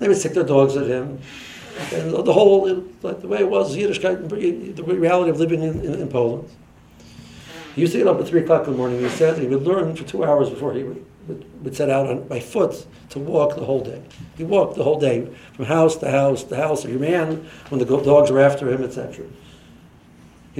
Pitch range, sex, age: 130-180 Hz, male, 60-79